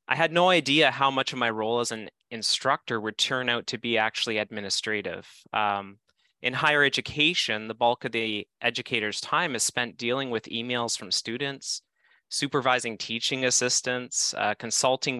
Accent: American